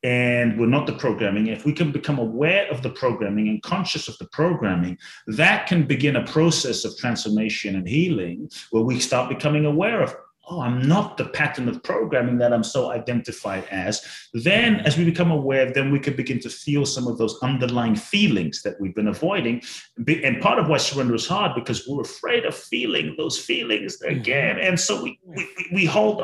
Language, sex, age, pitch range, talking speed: English, male, 30-49, 105-150 Hz, 195 wpm